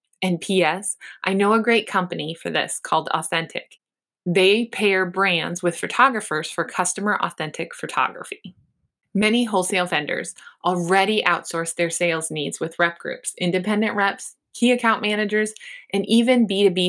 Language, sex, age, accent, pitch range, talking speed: English, female, 20-39, American, 170-215 Hz, 140 wpm